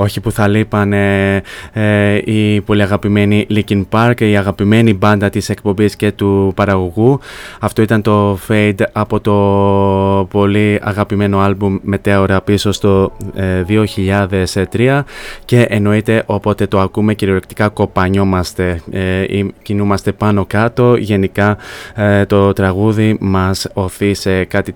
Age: 20-39